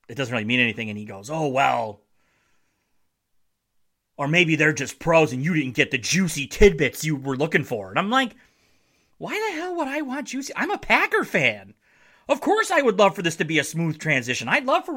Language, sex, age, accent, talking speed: English, male, 30-49, American, 220 wpm